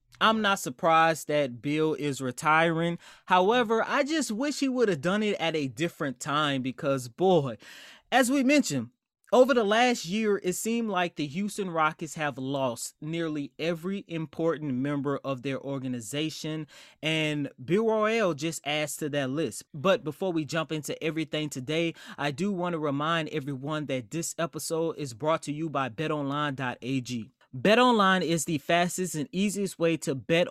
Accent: American